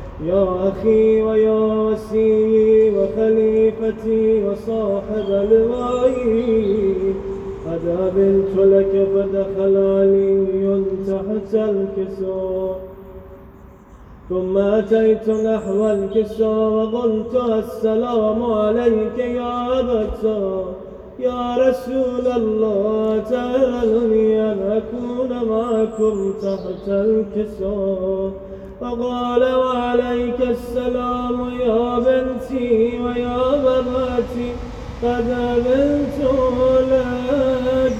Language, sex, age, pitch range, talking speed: Urdu, male, 20-39, 210-245 Hz, 65 wpm